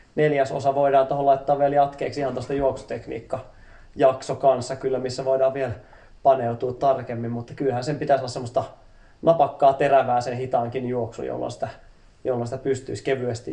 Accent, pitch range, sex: native, 120-140 Hz, male